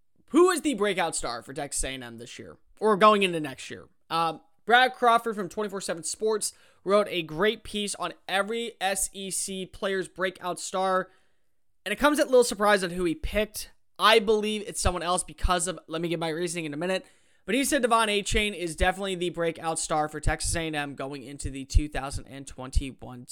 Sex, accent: male, American